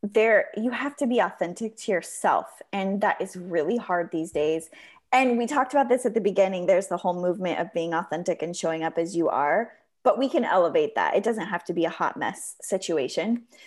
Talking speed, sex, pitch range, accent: 220 wpm, female, 180-255 Hz, American